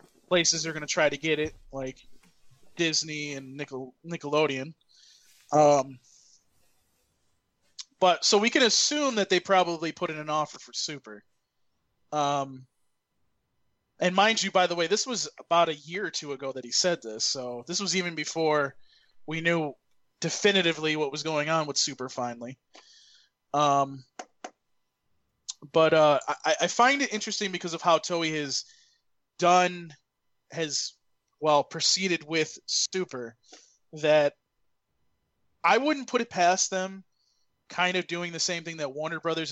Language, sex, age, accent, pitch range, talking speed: English, male, 20-39, American, 140-175 Hz, 145 wpm